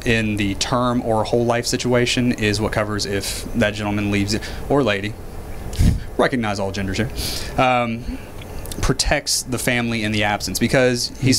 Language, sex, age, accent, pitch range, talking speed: English, male, 30-49, American, 105-125 Hz, 160 wpm